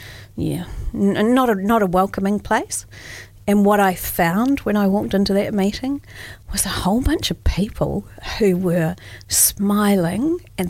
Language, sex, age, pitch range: English, female, 40-59, 165-205 Hz